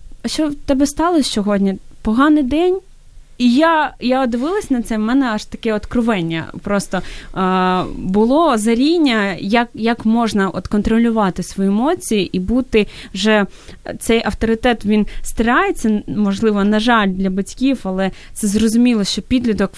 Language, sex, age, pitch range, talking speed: Ukrainian, female, 20-39, 200-240 Hz, 140 wpm